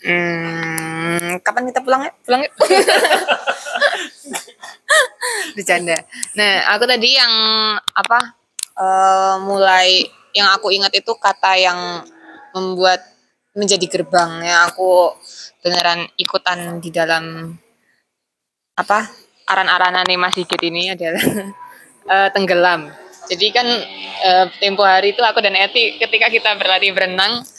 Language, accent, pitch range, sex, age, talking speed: Indonesian, native, 175-220 Hz, female, 20-39, 110 wpm